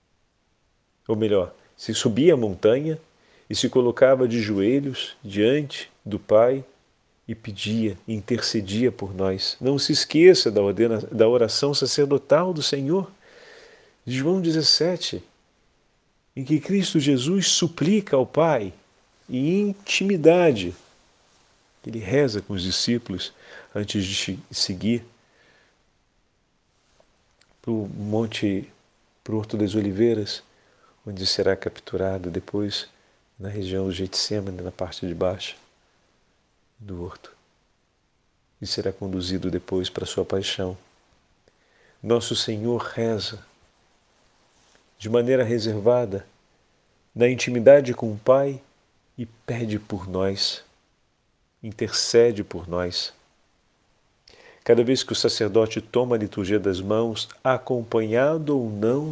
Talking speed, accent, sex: 110 wpm, Brazilian, male